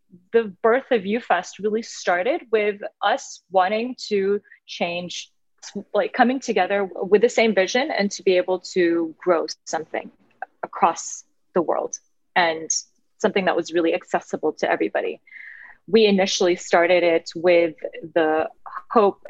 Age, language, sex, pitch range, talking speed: 30-49, English, female, 185-235 Hz, 135 wpm